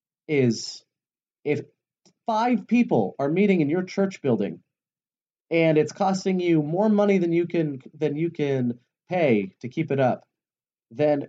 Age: 30-49